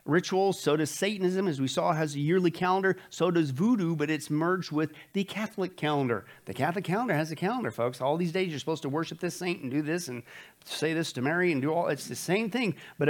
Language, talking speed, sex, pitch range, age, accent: English, 245 wpm, male, 140-185 Hz, 50-69, American